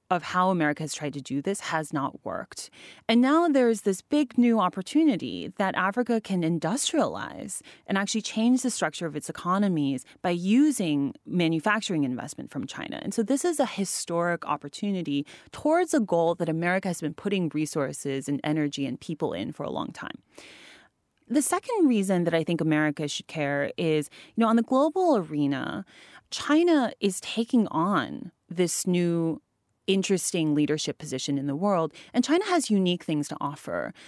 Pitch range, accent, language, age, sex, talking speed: 155-235 Hz, American, English, 30-49, female, 170 wpm